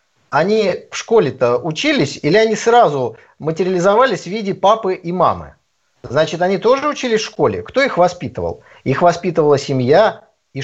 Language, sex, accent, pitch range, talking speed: Russian, male, native, 145-220 Hz, 145 wpm